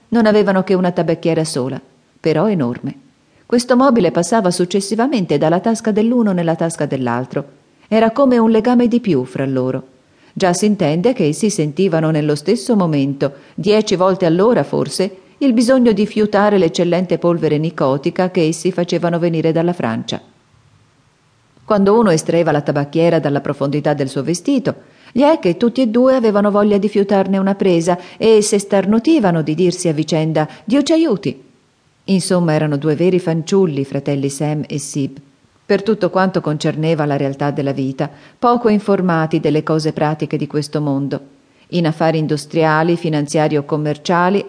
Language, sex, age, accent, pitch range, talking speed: Italian, female, 40-59, native, 150-200 Hz, 155 wpm